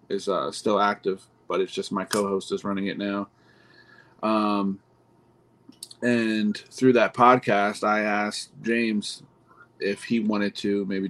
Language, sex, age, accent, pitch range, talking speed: English, male, 30-49, American, 100-110 Hz, 140 wpm